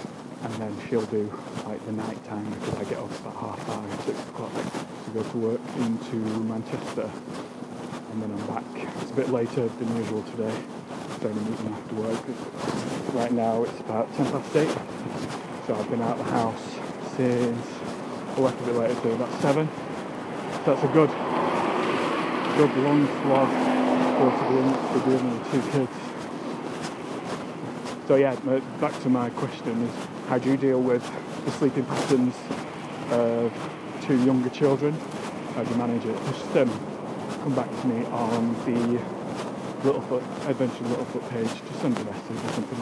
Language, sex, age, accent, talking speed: English, male, 20-39, British, 170 wpm